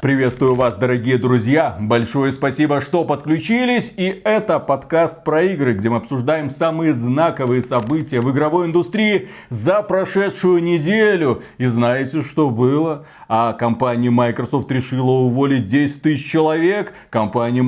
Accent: native